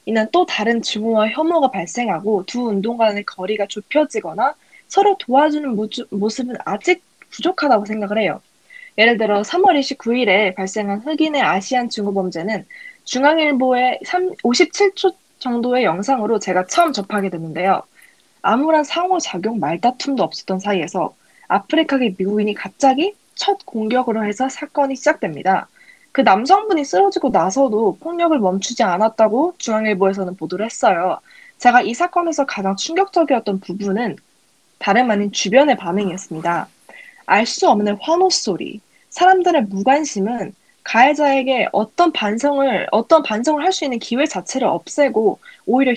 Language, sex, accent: Korean, female, native